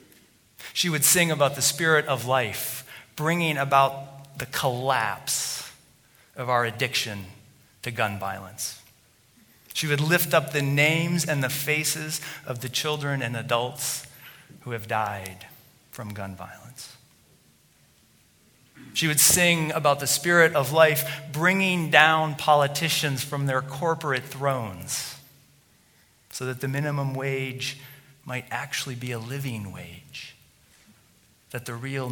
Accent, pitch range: American, 125-150 Hz